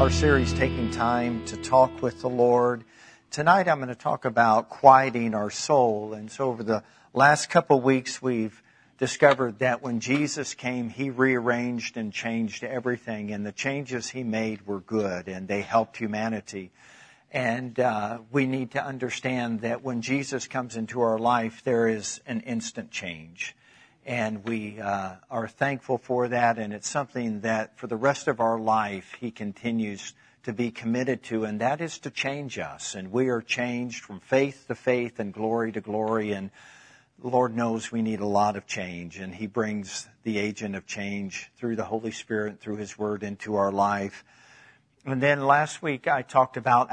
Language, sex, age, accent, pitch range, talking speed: English, male, 50-69, American, 110-125 Hz, 180 wpm